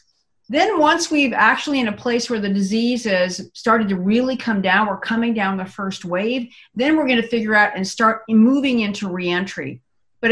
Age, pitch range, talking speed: 50-69, 195-245 Hz, 200 wpm